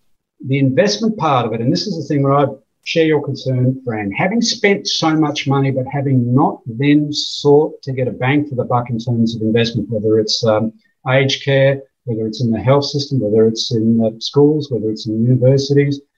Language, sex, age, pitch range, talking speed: English, male, 50-69, 120-150 Hz, 210 wpm